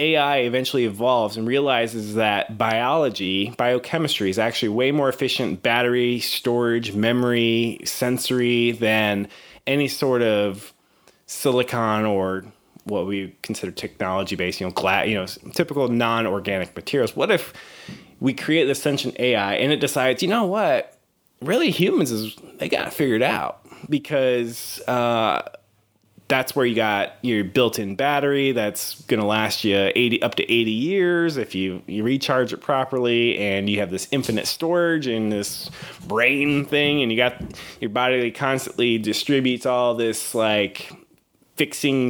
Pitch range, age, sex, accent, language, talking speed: 110-140 Hz, 20-39, male, American, English, 150 wpm